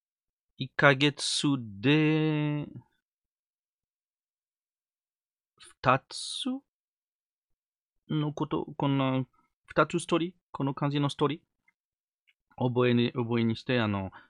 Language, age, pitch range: English, 40-59, 115-155 Hz